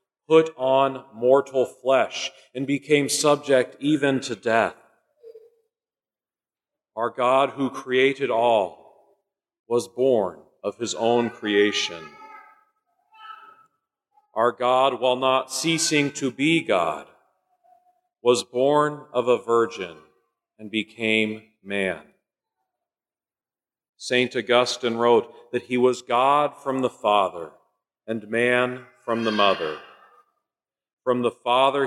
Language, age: English, 40-59